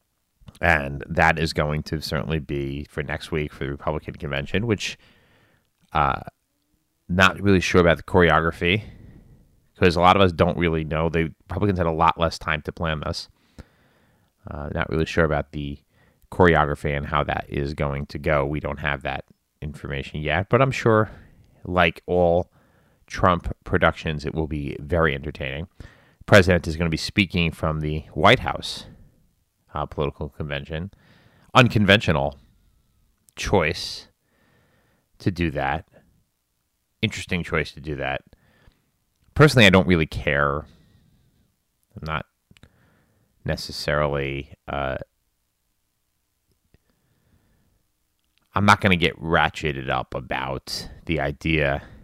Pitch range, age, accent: 75-90 Hz, 30-49, American